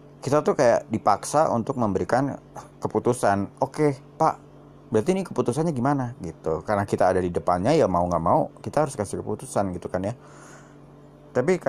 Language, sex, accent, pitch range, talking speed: Indonesian, male, native, 100-145 Hz, 165 wpm